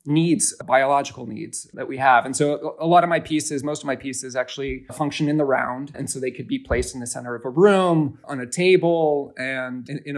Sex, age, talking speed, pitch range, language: male, 30-49, 230 wpm, 130-155 Hz, English